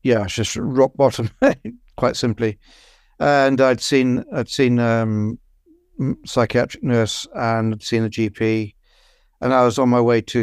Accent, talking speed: British, 150 wpm